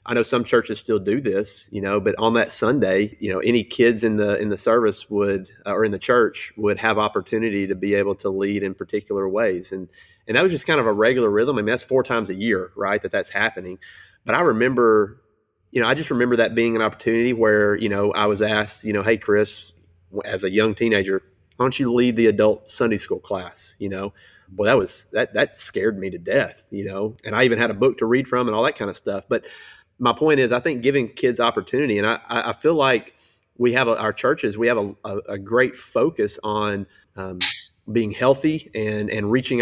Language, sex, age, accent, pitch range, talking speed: English, male, 30-49, American, 100-120 Hz, 235 wpm